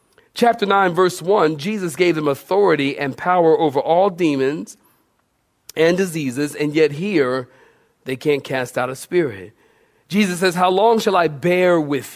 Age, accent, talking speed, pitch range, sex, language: 40-59, American, 160 wpm, 140-205 Hz, male, English